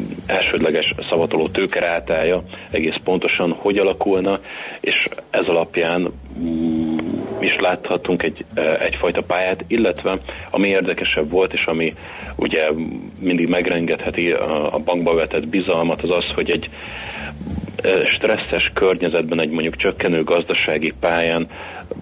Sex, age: male, 30-49